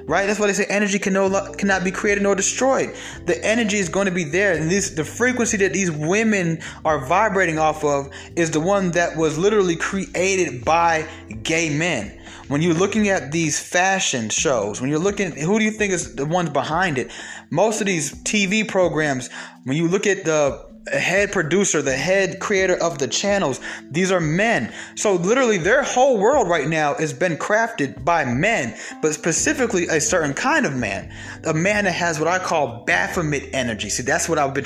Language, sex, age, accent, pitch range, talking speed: English, male, 20-39, American, 145-200 Hz, 190 wpm